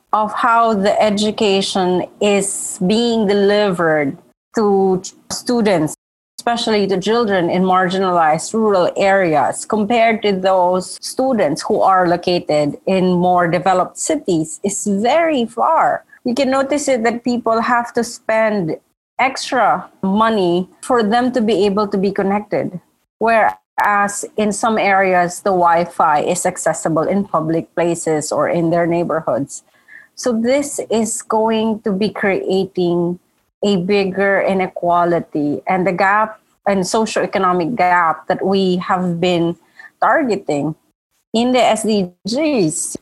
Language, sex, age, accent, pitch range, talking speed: English, female, 30-49, Filipino, 180-225 Hz, 125 wpm